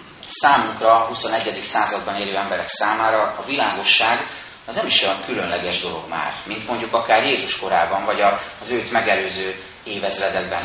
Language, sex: Hungarian, male